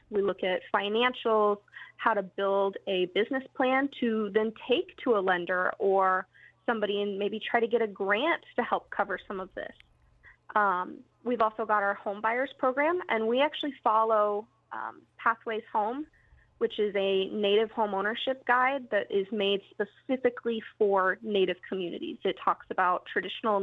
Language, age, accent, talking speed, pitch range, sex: English, 20-39, American, 165 wpm, 205-245 Hz, female